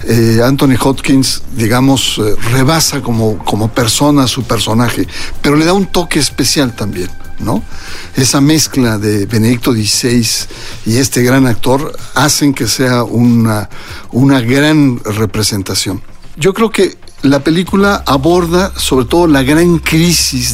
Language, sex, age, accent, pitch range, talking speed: Spanish, male, 60-79, Mexican, 110-145 Hz, 135 wpm